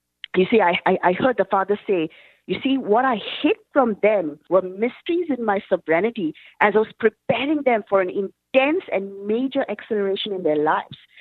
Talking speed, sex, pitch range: 180 wpm, female, 185-255 Hz